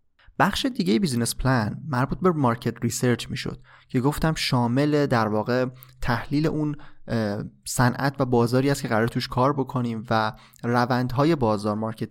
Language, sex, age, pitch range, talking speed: Persian, male, 20-39, 115-140 Hz, 145 wpm